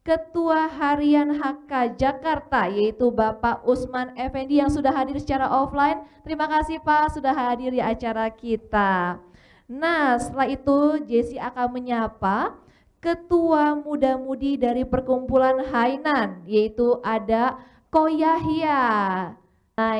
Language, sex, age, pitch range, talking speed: Indonesian, female, 20-39, 225-280 Hz, 110 wpm